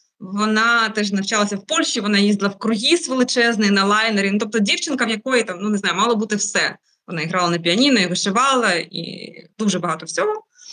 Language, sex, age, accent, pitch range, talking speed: Ukrainian, female, 20-39, native, 205-265 Hz, 190 wpm